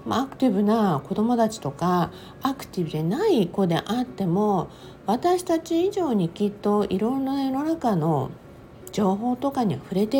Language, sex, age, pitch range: Japanese, female, 50-69, 160-250 Hz